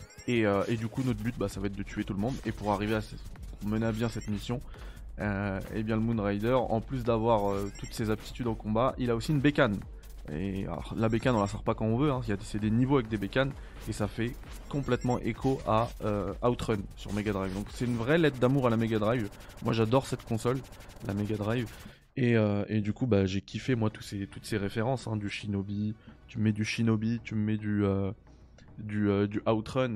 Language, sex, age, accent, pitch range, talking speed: French, male, 20-39, French, 105-125 Hz, 250 wpm